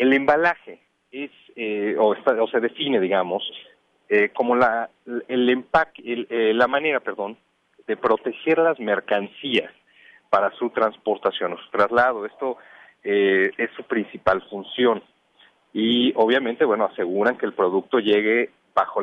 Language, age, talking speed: English, 40-59, 140 wpm